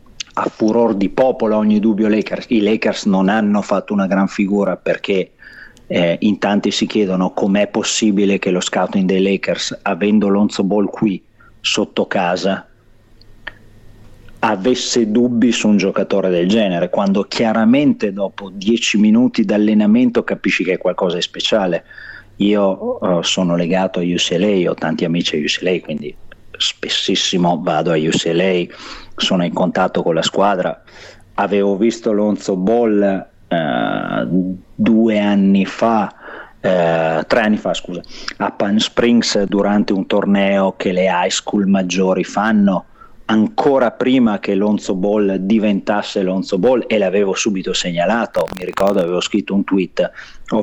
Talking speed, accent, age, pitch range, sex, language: 135 wpm, native, 40-59, 95-110 Hz, male, Italian